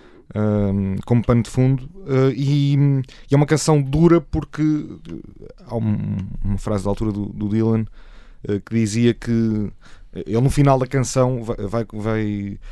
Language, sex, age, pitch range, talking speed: Portuguese, male, 20-39, 105-130 Hz, 160 wpm